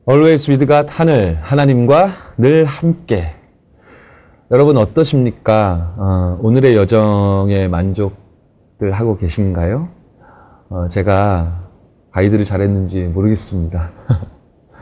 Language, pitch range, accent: Korean, 90-120 Hz, native